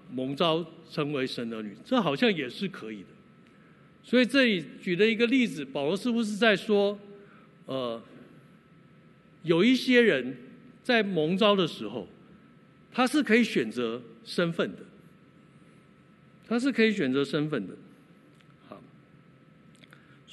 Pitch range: 180-240 Hz